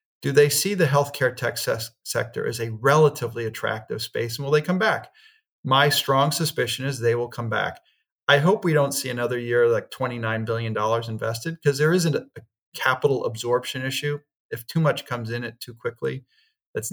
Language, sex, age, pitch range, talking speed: English, male, 40-59, 115-150 Hz, 190 wpm